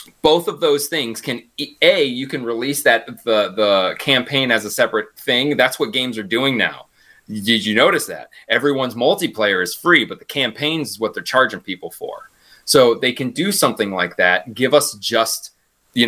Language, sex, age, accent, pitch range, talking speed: English, male, 30-49, American, 115-155 Hz, 190 wpm